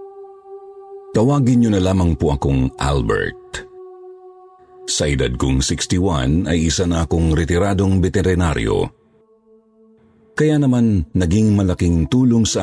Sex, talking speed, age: male, 110 wpm, 50-69